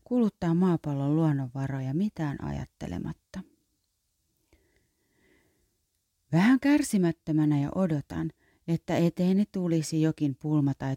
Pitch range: 140-175 Hz